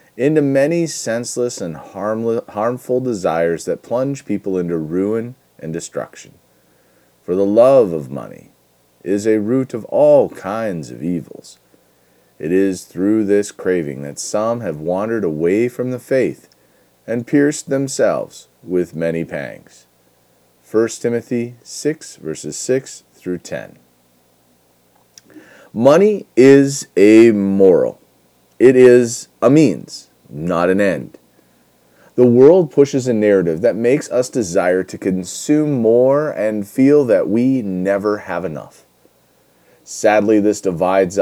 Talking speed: 120 wpm